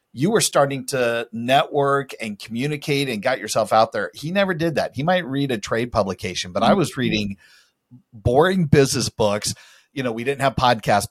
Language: English